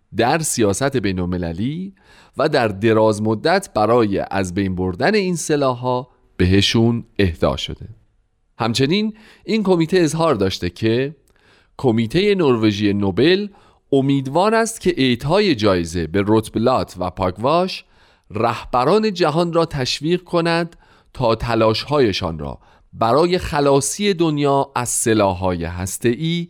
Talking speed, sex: 115 wpm, male